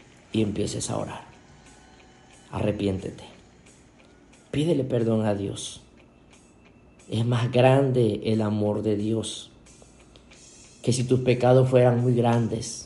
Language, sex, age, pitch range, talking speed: Spanish, male, 40-59, 105-130 Hz, 105 wpm